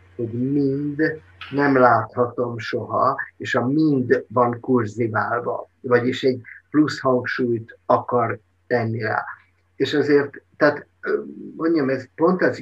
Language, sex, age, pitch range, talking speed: Hungarian, male, 50-69, 120-145 Hz, 115 wpm